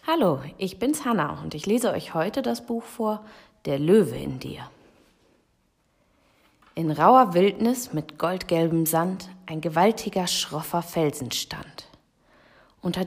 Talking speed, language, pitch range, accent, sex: 130 wpm, German, 160-225 Hz, German, female